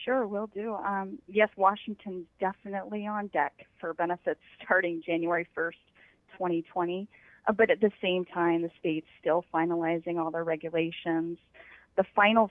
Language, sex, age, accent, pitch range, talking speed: English, female, 30-49, American, 170-200 Hz, 150 wpm